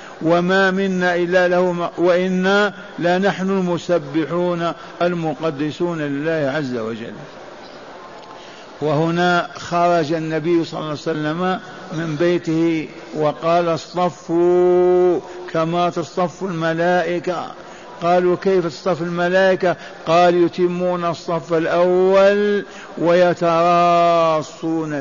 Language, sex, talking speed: Arabic, male, 85 wpm